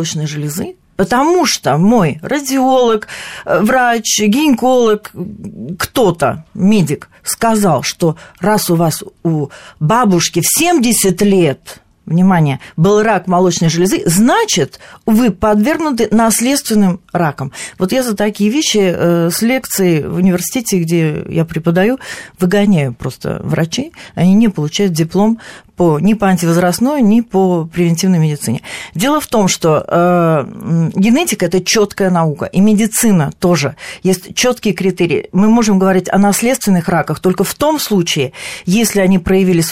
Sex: female